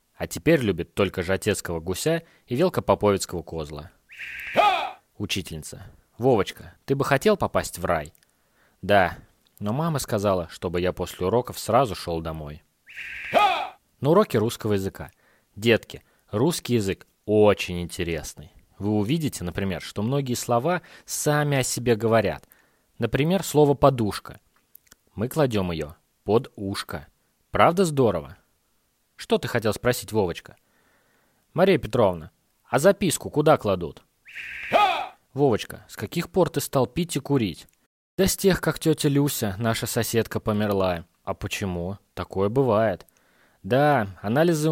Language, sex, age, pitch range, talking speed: Russian, male, 20-39, 95-140 Hz, 125 wpm